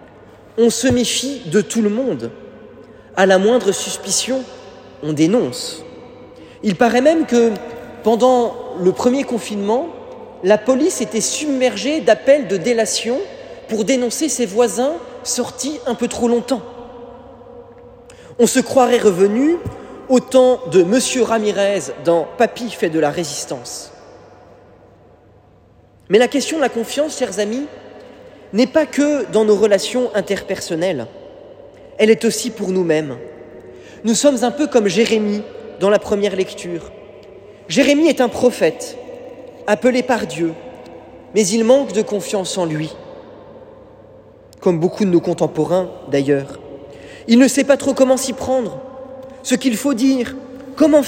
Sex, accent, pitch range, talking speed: male, French, 200-265 Hz, 135 wpm